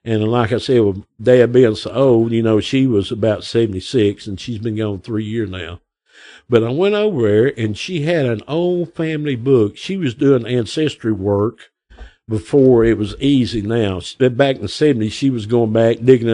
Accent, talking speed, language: American, 195 wpm, English